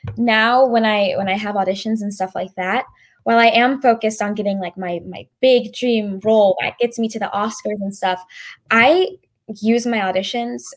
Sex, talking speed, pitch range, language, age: female, 195 wpm, 195-245 Hz, English, 10-29